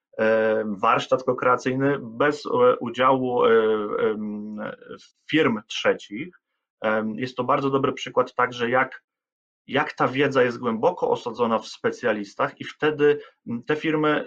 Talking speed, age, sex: 105 wpm, 30-49, male